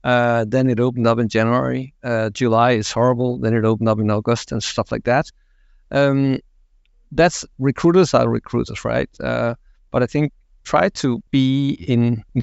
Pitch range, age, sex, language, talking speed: 110-135 Hz, 50-69, male, English, 175 wpm